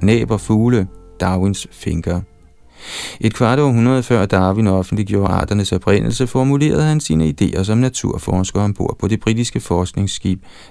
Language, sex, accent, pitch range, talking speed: Danish, male, native, 95-120 Hz, 135 wpm